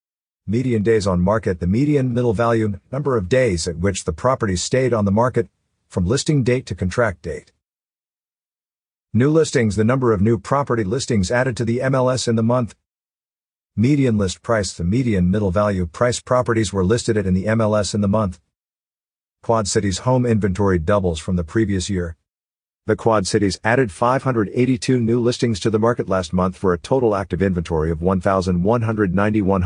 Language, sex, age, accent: English, male, 50-69, American